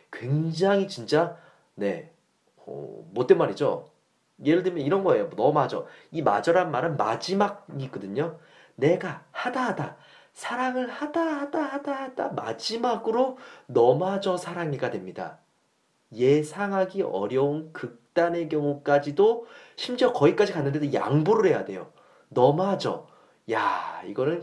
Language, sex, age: Korean, male, 30-49